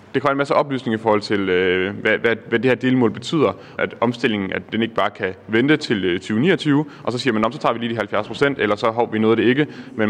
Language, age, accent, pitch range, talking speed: Danish, 30-49, native, 105-125 Hz, 265 wpm